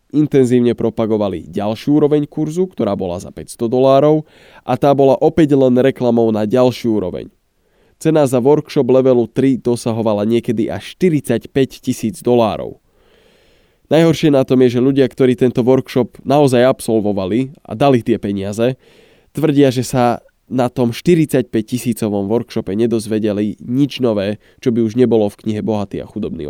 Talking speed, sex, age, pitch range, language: 145 wpm, male, 20-39, 105-130 Hz, Slovak